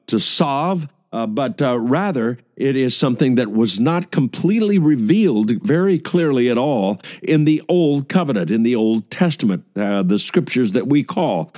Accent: American